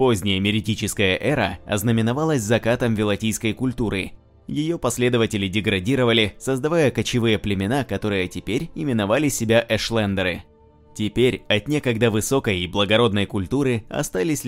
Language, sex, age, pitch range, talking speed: Russian, male, 20-39, 100-125 Hz, 110 wpm